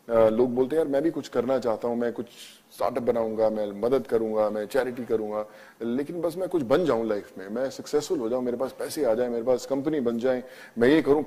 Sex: male